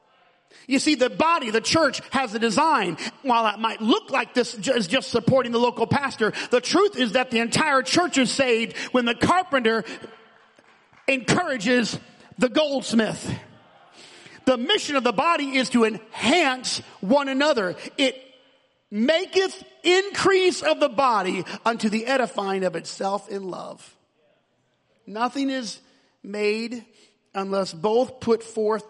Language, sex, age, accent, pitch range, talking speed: English, male, 40-59, American, 215-295 Hz, 135 wpm